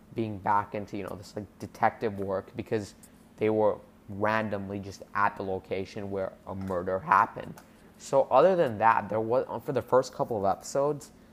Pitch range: 100-120 Hz